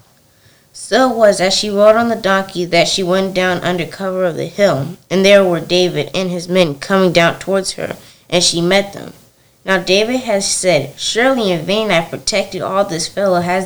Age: 20-39